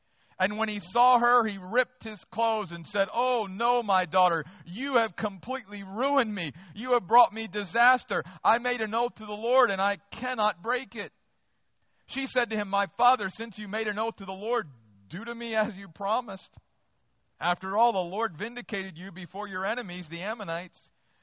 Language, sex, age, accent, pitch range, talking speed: English, male, 50-69, American, 180-230 Hz, 190 wpm